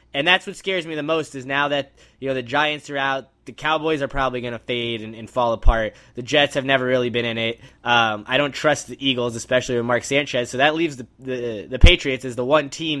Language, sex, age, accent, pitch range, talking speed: English, male, 10-29, American, 130-150 Hz, 260 wpm